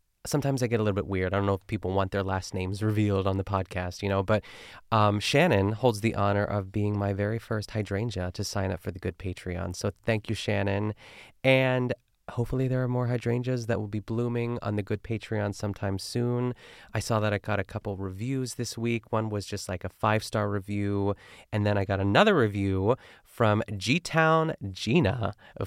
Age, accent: 20-39, American